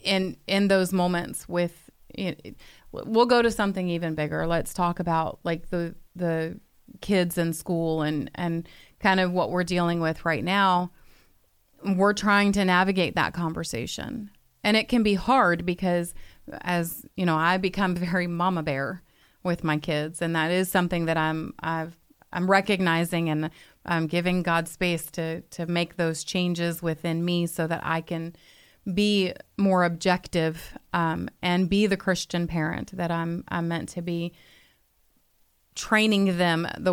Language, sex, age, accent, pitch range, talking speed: English, female, 30-49, American, 165-185 Hz, 160 wpm